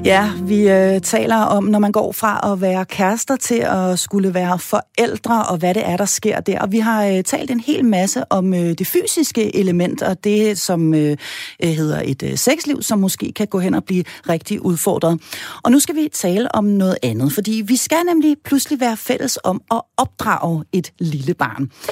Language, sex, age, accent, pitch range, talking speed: Danish, female, 40-59, native, 155-240 Hz, 205 wpm